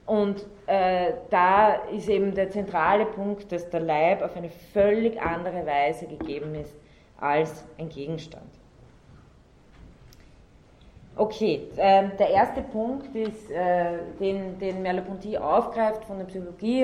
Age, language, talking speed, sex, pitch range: 30-49, German, 125 wpm, female, 165-205 Hz